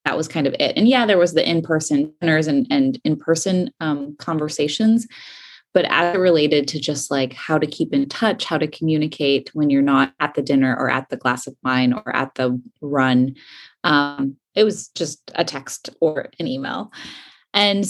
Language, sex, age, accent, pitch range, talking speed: English, female, 20-39, American, 145-190 Hz, 185 wpm